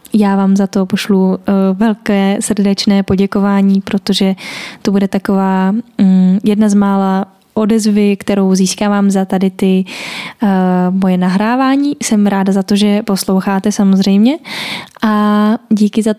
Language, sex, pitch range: Czech, female, 195-220 Hz